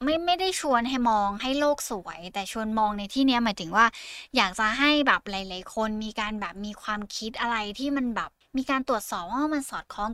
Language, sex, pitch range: Thai, female, 205-260 Hz